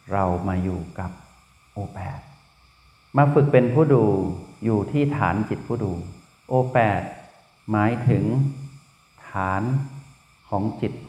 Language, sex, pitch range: Thai, male, 100-130 Hz